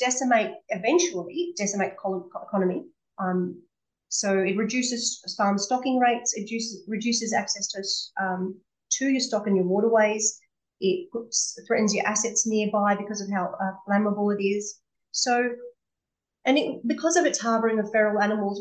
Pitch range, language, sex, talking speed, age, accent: 190-235 Hz, English, female, 150 wpm, 30-49, Australian